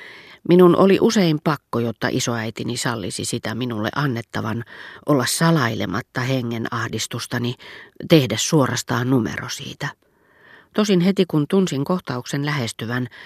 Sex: female